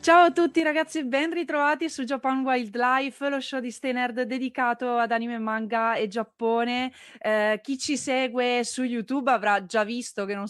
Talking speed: 170 wpm